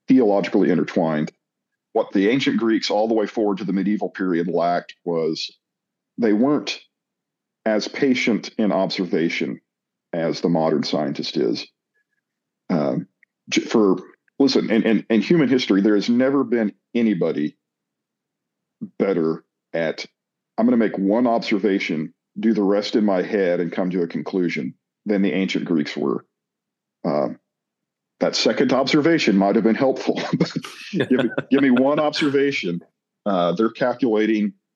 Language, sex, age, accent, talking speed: English, male, 50-69, American, 140 wpm